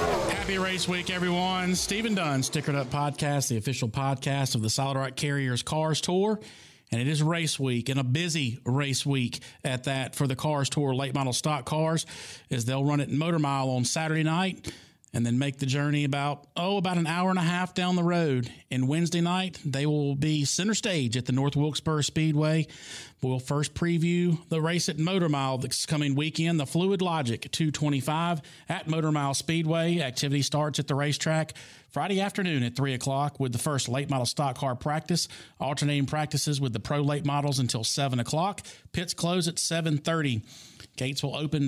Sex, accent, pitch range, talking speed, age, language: male, American, 135-165 Hz, 190 wpm, 40-59, English